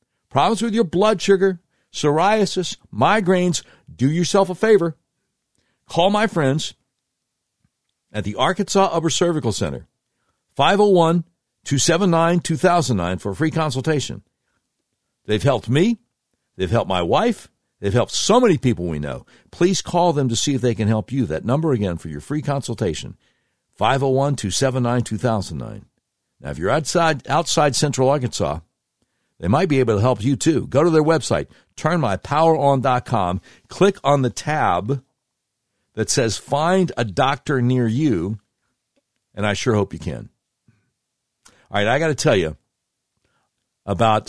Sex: male